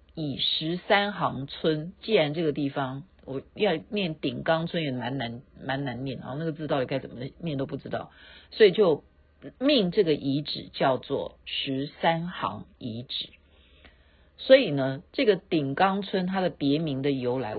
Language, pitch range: Chinese, 140-220 Hz